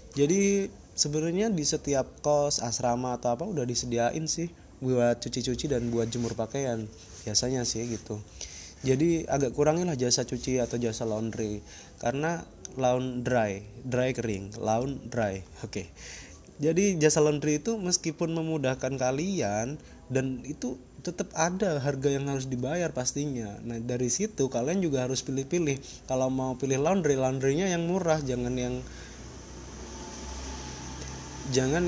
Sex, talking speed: male, 135 wpm